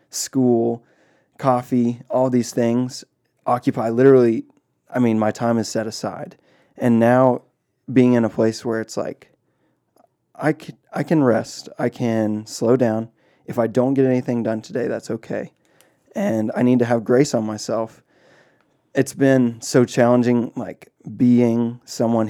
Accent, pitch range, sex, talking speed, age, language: American, 110-125 Hz, male, 150 wpm, 20-39, English